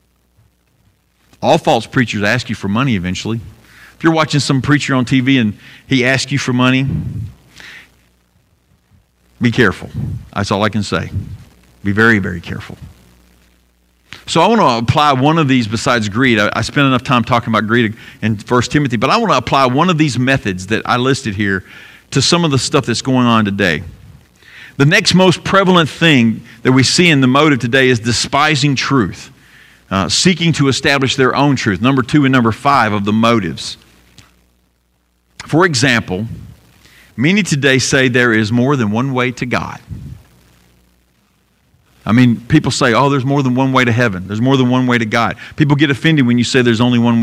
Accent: American